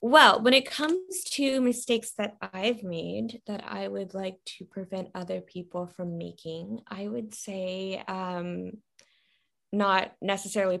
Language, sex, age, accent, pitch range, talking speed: English, female, 10-29, American, 175-225 Hz, 140 wpm